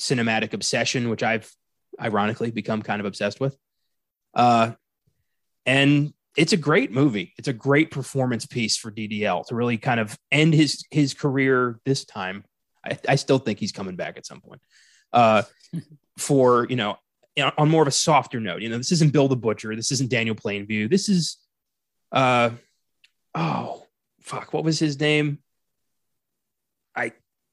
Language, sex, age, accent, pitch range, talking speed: English, male, 20-39, American, 115-145 Hz, 160 wpm